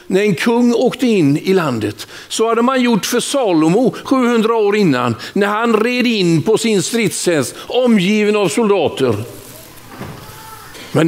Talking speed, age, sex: 145 wpm, 60-79, male